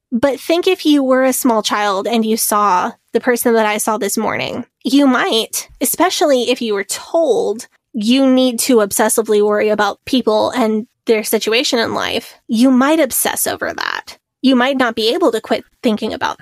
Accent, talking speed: American, 185 wpm